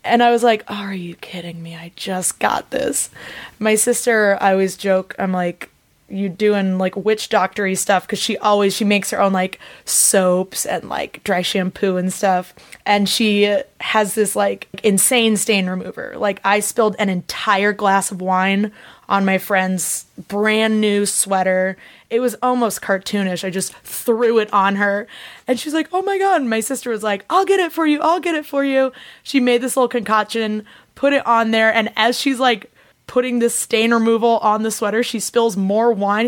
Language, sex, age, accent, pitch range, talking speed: English, female, 20-39, American, 195-235 Hz, 195 wpm